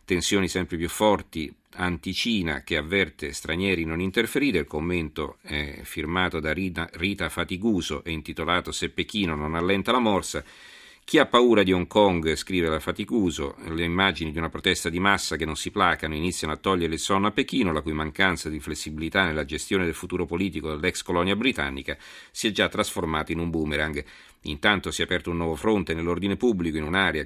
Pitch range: 80-95 Hz